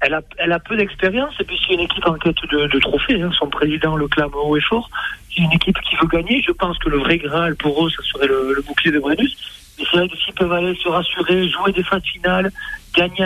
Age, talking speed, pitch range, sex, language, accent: 50-69, 255 wpm, 155-185 Hz, male, French, French